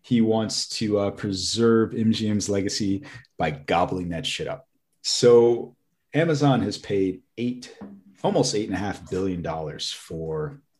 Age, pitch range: 30-49, 85-110 Hz